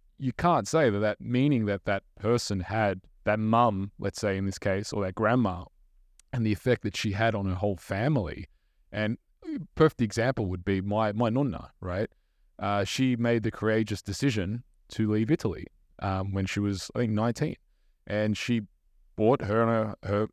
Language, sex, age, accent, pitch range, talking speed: English, male, 20-39, Australian, 95-125 Hz, 185 wpm